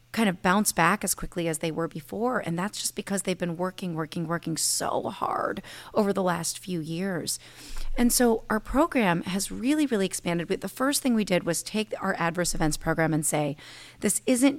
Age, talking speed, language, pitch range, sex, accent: 30-49, 200 wpm, English, 160-195 Hz, female, American